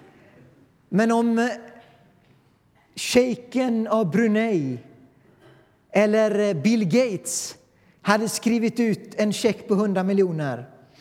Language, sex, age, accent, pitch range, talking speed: Swedish, male, 40-59, native, 175-215 Hz, 85 wpm